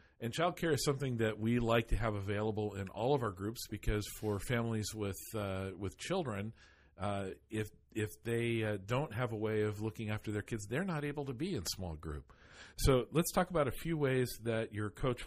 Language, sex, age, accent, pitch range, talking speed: English, male, 50-69, American, 95-115 Hz, 215 wpm